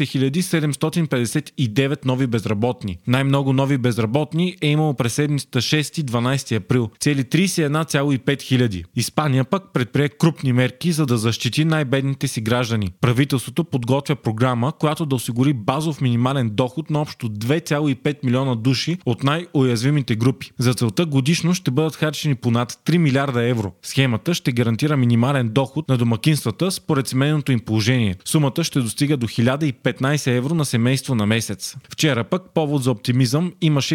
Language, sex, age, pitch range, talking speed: Bulgarian, male, 20-39, 125-155 Hz, 145 wpm